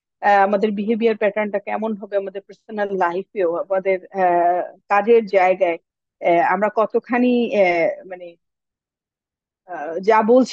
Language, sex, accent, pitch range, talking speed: English, female, Indian, 190-245 Hz, 90 wpm